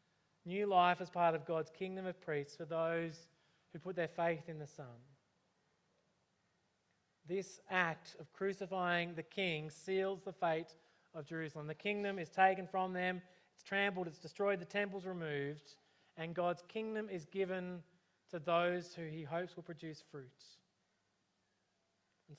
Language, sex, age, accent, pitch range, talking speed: English, male, 20-39, Australian, 165-195 Hz, 150 wpm